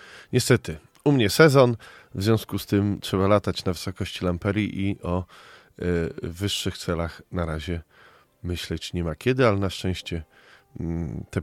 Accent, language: native, Polish